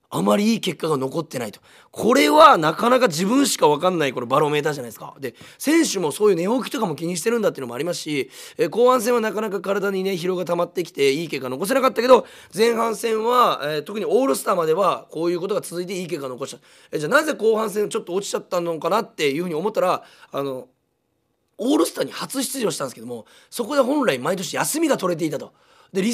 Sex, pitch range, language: male, 155-245 Hz, Japanese